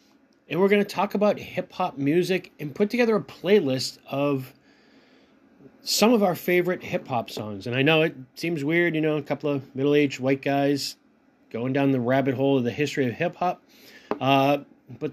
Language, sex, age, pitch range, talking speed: English, male, 30-49, 135-175 Hz, 180 wpm